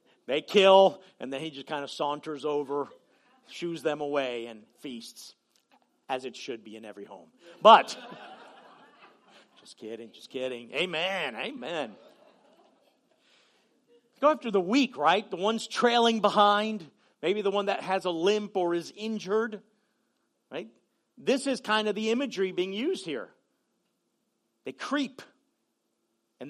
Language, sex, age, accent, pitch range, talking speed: English, male, 50-69, American, 150-220 Hz, 140 wpm